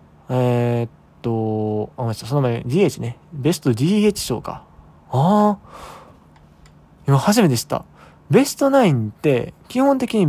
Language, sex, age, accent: Japanese, male, 20-39, native